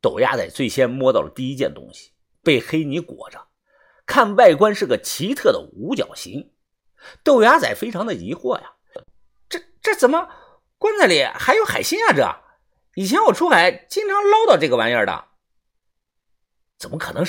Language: Chinese